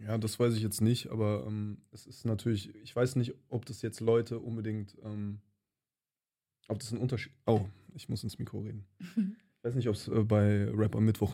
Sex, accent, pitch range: male, German, 100-115 Hz